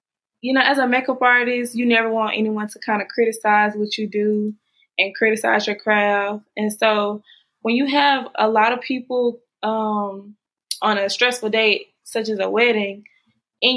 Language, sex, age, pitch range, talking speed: English, female, 20-39, 205-235 Hz, 175 wpm